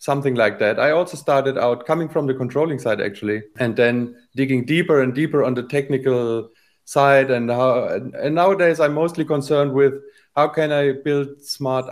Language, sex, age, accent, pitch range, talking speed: German, male, 30-49, German, 120-150 Hz, 180 wpm